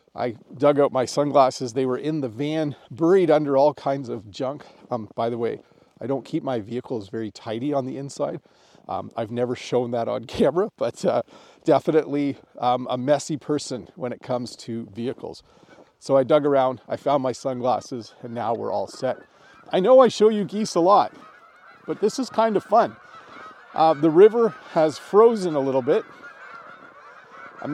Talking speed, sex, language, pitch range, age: 185 wpm, male, English, 125-170 Hz, 40-59